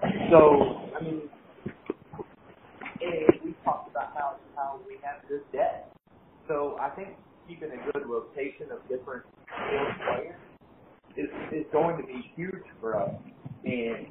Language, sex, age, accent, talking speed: English, male, 30-49, American, 130 wpm